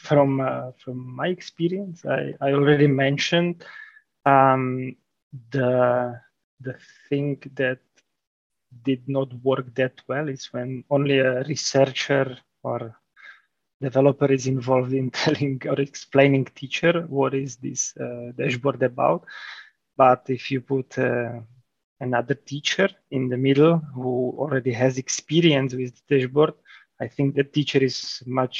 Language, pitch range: English, 125-140 Hz